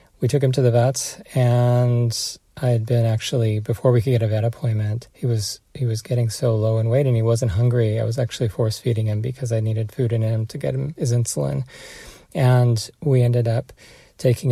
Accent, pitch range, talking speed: American, 115-130 Hz, 220 wpm